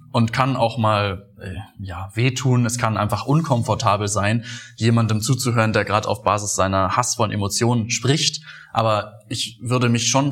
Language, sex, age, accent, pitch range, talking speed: German, male, 20-39, German, 110-130 Hz, 150 wpm